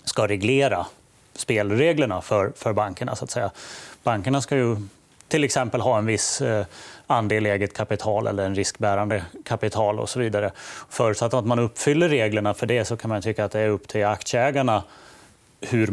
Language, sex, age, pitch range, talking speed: Swedish, male, 30-49, 105-125 Hz, 170 wpm